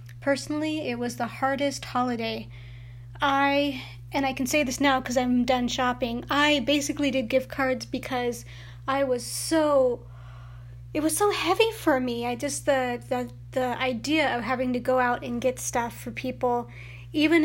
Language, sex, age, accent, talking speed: English, female, 30-49, American, 170 wpm